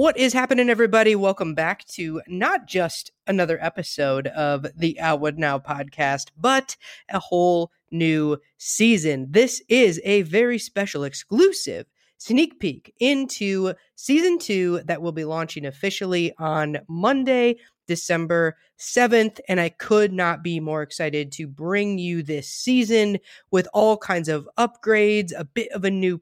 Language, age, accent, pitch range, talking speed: English, 30-49, American, 165-215 Hz, 145 wpm